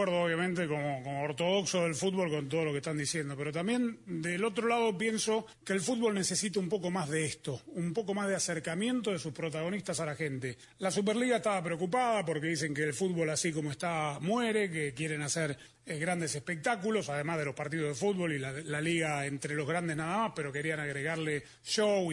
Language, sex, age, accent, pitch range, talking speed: Spanish, male, 30-49, Argentinian, 160-210 Hz, 210 wpm